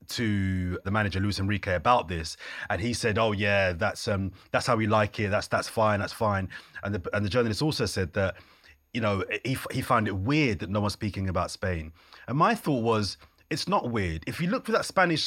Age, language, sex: 30-49, English, male